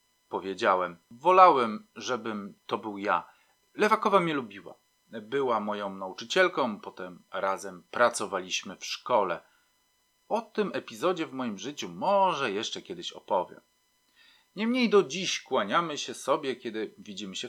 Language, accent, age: Polish, native, 40-59